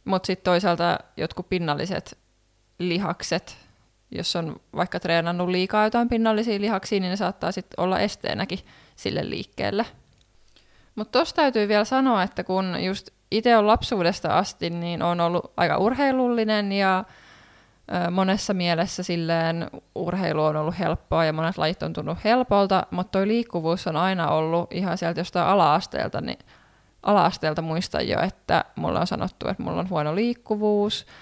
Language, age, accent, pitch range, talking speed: Finnish, 20-39, native, 165-195 Hz, 145 wpm